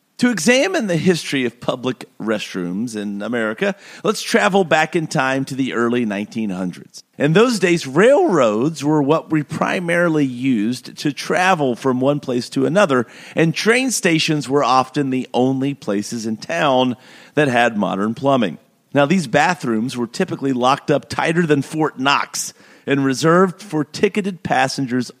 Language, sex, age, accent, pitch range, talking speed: English, male, 40-59, American, 130-185 Hz, 150 wpm